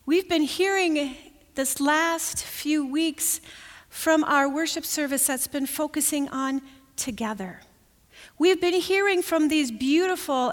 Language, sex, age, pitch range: English, female, 40-59, 240-315 Hz